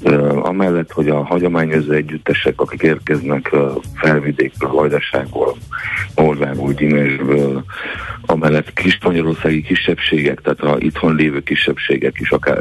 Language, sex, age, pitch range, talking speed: Hungarian, male, 50-69, 70-85 Hz, 105 wpm